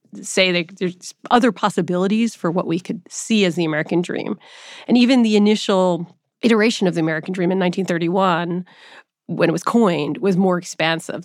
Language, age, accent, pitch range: English, 30-49, American, 180-215 Hz